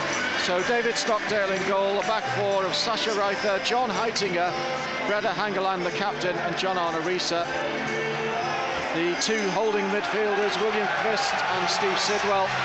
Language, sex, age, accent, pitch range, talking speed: English, male, 50-69, British, 175-215 Hz, 140 wpm